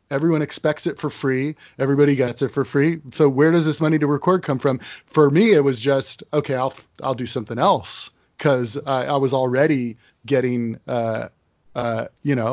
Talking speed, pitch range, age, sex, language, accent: 190 wpm, 125-145 Hz, 20-39, male, English, American